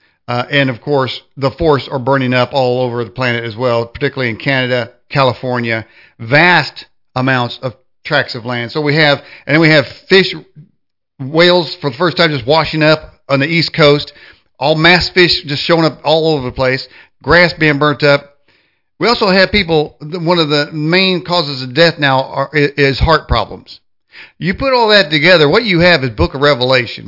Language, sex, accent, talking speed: English, male, American, 195 wpm